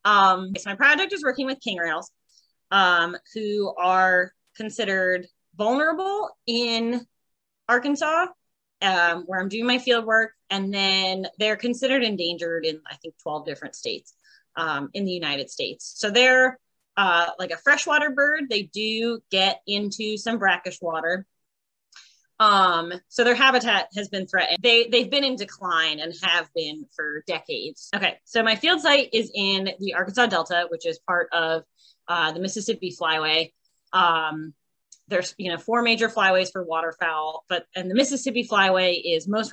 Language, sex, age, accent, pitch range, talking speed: English, female, 20-39, American, 170-235 Hz, 160 wpm